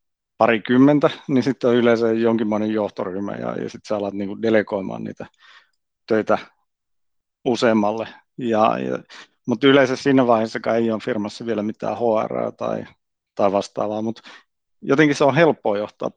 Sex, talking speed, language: male, 140 wpm, Finnish